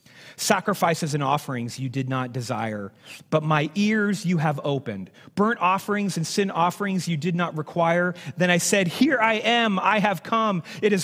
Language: English